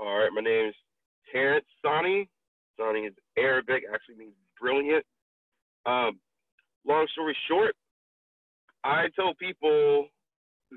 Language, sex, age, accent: English, male, 30-49, American